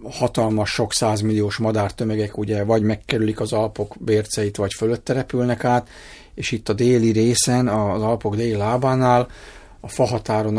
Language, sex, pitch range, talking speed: Hungarian, male, 105-130 Hz, 135 wpm